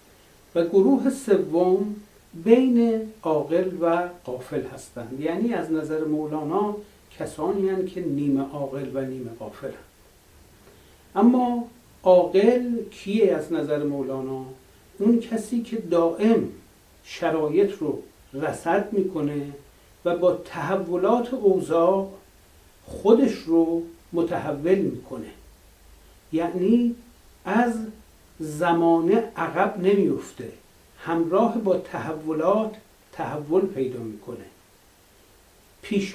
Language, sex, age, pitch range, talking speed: Persian, male, 60-79, 155-215 Hz, 90 wpm